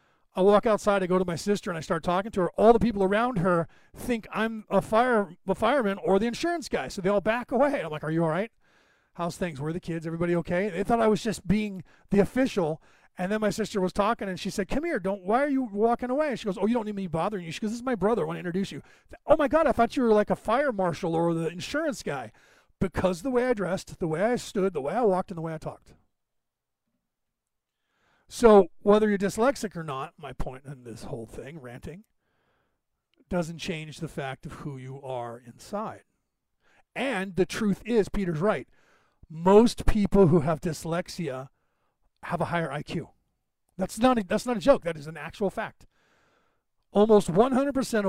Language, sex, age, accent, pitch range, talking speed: English, male, 40-59, American, 170-220 Hz, 220 wpm